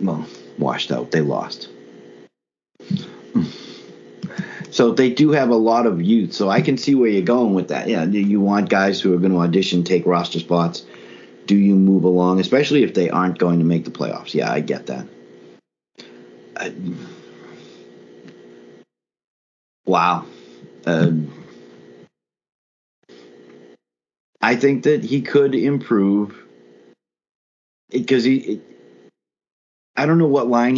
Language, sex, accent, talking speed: English, male, American, 135 wpm